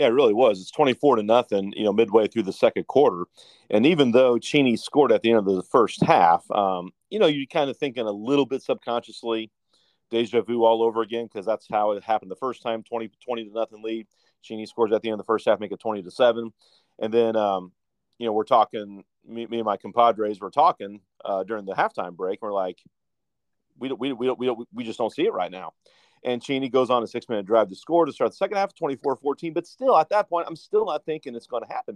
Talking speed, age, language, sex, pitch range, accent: 250 wpm, 40-59, English, male, 110-155 Hz, American